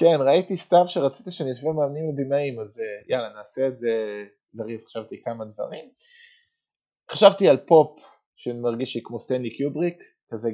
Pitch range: 120-160 Hz